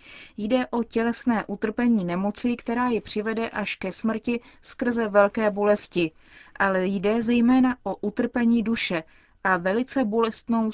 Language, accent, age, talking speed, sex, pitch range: Czech, native, 30-49, 130 wpm, female, 195-230 Hz